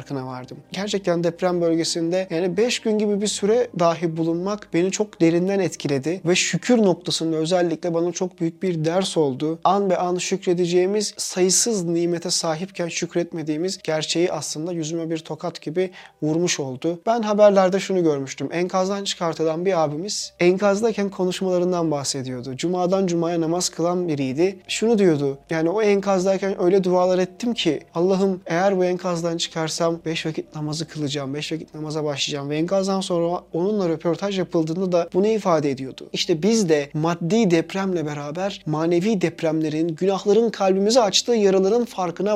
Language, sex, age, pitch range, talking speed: Turkish, male, 30-49, 160-195 Hz, 145 wpm